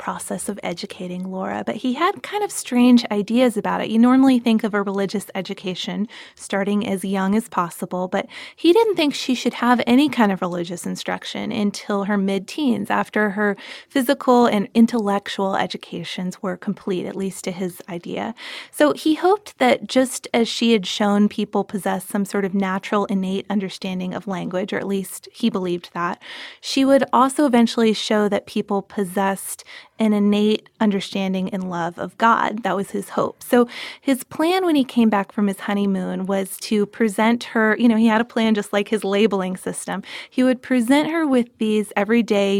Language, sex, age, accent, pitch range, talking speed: English, female, 20-39, American, 195-240 Hz, 180 wpm